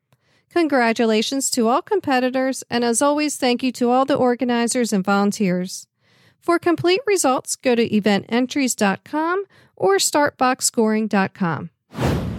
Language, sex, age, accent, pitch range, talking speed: English, female, 40-59, American, 210-285 Hz, 110 wpm